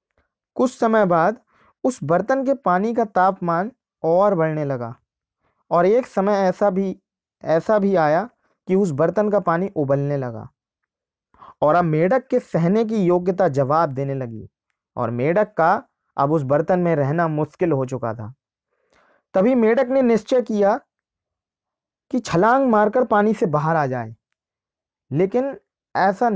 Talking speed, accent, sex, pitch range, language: 145 wpm, native, male, 160-225 Hz, Hindi